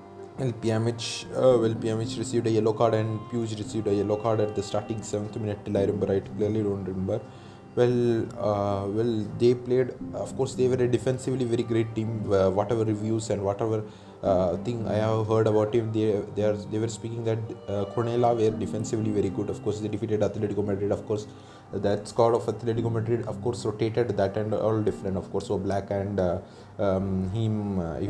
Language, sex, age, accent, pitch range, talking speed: English, male, 20-39, Indian, 100-115 Hz, 200 wpm